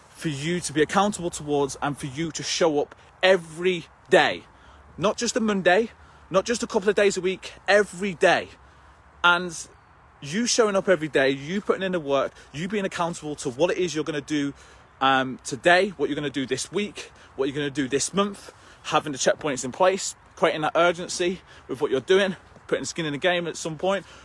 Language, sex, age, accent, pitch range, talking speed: English, male, 20-39, British, 145-185 Hz, 215 wpm